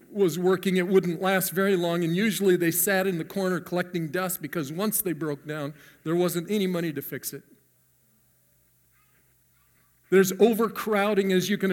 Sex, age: male, 50-69